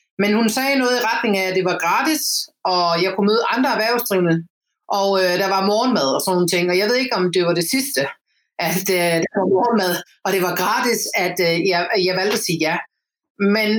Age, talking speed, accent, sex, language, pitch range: 30-49, 230 wpm, native, female, Danish, 185-235 Hz